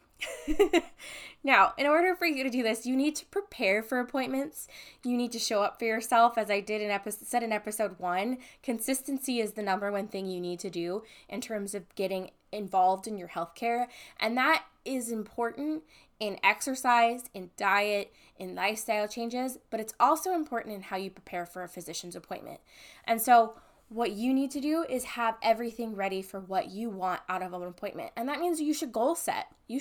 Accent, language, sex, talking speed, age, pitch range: American, English, female, 200 wpm, 10-29, 200-265 Hz